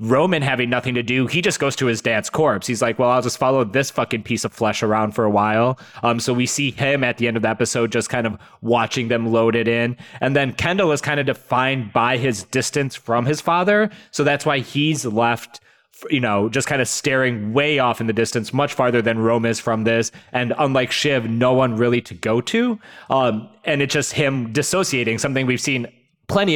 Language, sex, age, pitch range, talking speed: English, male, 20-39, 120-150 Hz, 230 wpm